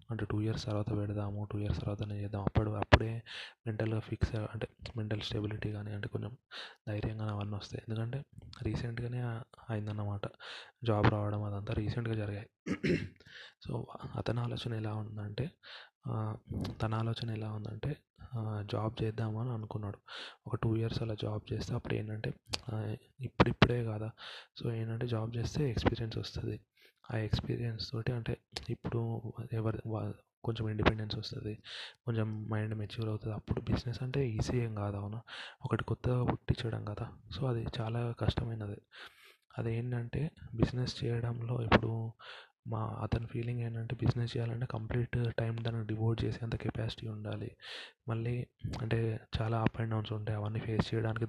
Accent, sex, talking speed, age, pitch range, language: native, male, 130 wpm, 20-39, 105-120 Hz, Telugu